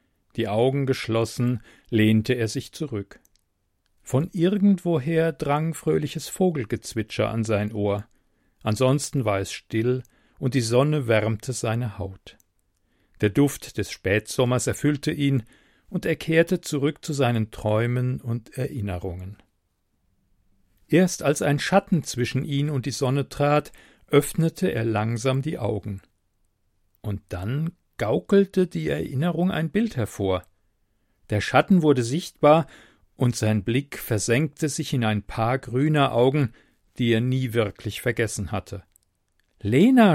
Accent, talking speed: German, 125 wpm